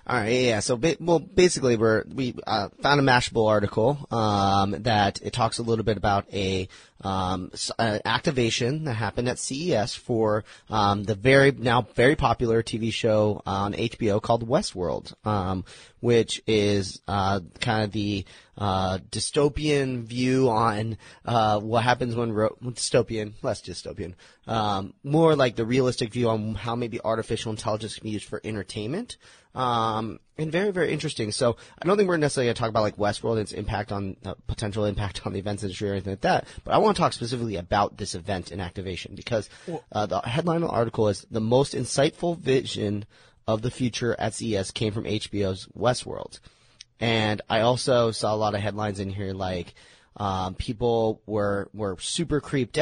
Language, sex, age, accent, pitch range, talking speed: English, male, 30-49, American, 105-125 Hz, 180 wpm